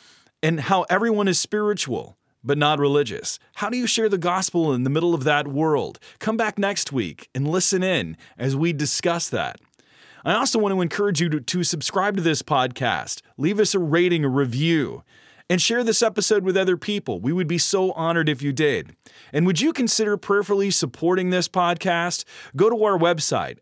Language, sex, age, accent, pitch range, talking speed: English, male, 30-49, American, 145-185 Hz, 195 wpm